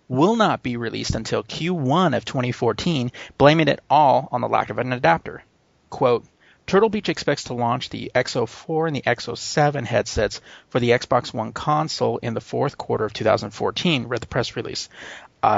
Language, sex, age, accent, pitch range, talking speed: English, male, 30-49, American, 115-135 Hz, 175 wpm